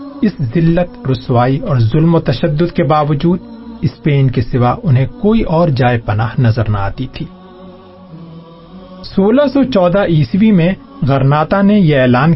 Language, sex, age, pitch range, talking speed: Urdu, male, 40-59, 130-185 Hz, 140 wpm